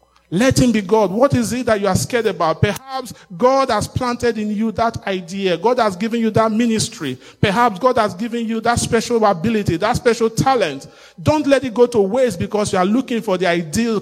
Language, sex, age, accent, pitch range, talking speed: English, male, 40-59, Nigerian, 190-240 Hz, 215 wpm